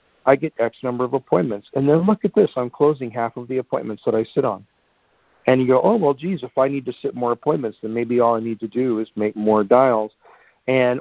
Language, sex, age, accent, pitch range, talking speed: English, male, 50-69, American, 115-130 Hz, 250 wpm